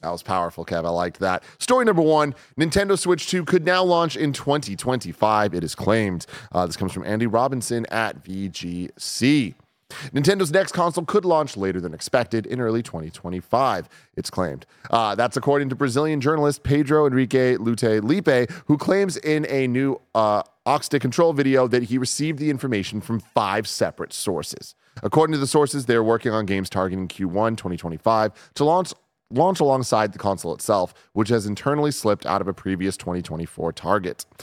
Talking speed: 170 wpm